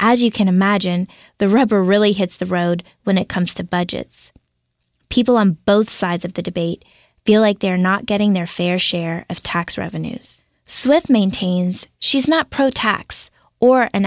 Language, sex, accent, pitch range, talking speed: English, female, American, 180-225 Hz, 170 wpm